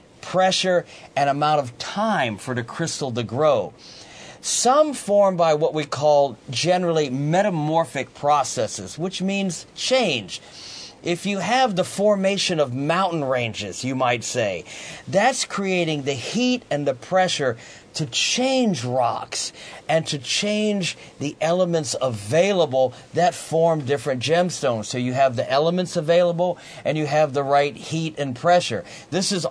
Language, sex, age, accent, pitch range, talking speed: English, male, 50-69, American, 130-170 Hz, 140 wpm